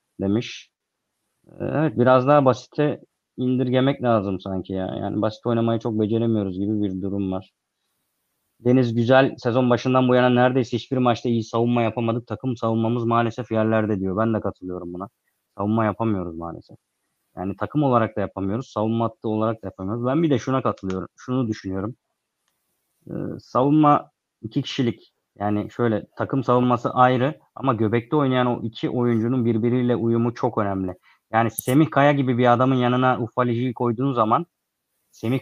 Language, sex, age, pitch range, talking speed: Turkish, male, 30-49, 110-135 Hz, 150 wpm